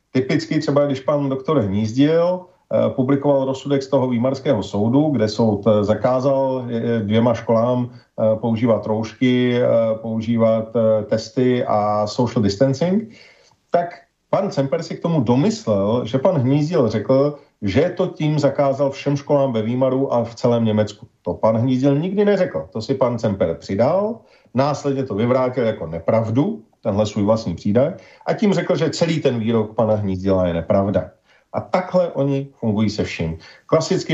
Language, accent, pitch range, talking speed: Czech, native, 110-140 Hz, 150 wpm